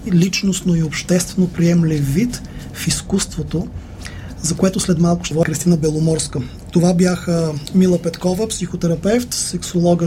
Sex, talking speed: male, 125 wpm